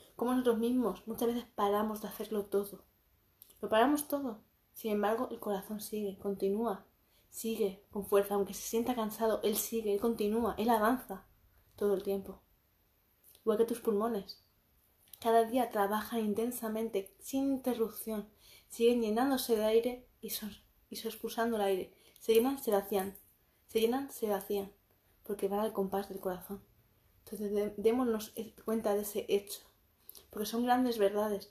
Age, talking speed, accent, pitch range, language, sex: 20-39, 150 wpm, Spanish, 200-230 Hz, Spanish, female